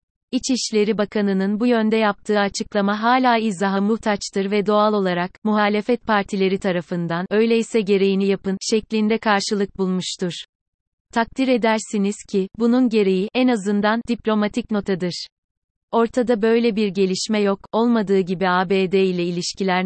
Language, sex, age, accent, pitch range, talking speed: Turkish, female, 30-49, native, 190-225 Hz, 120 wpm